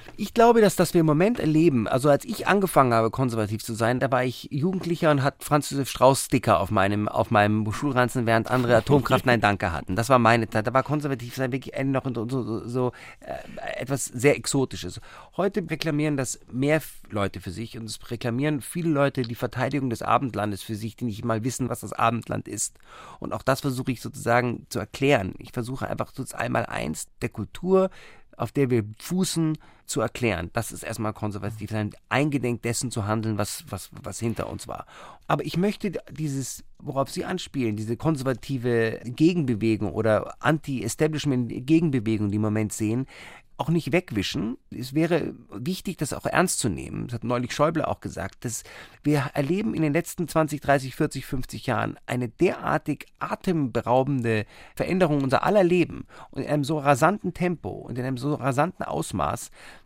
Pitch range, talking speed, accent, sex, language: 115-150 Hz, 180 wpm, German, male, German